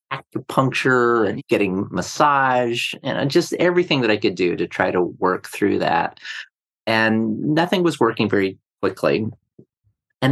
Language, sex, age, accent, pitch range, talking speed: English, male, 40-59, American, 95-120 Hz, 140 wpm